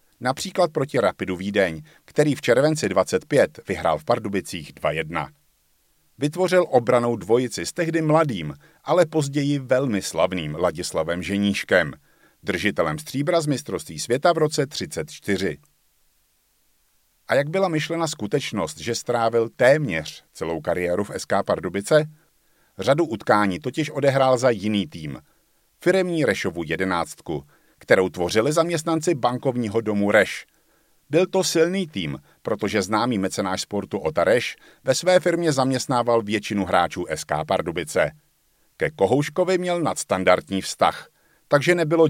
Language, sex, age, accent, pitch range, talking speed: Czech, male, 50-69, native, 105-160 Hz, 120 wpm